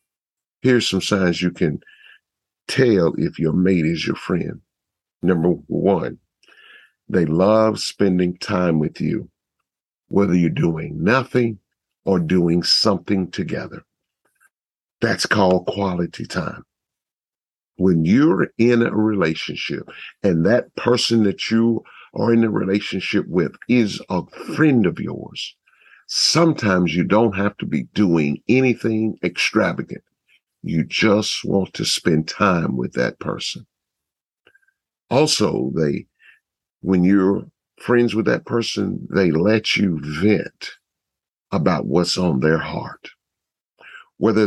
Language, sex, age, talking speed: English, male, 50-69, 120 wpm